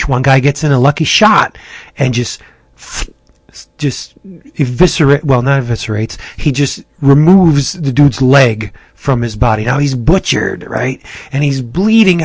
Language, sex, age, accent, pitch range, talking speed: English, male, 30-49, American, 125-150 Hz, 145 wpm